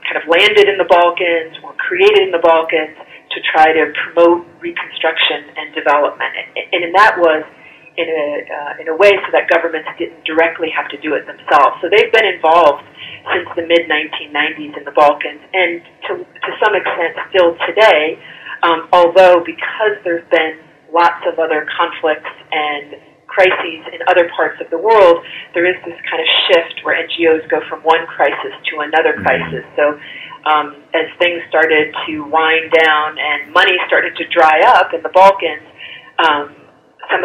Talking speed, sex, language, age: 170 wpm, female, English, 40-59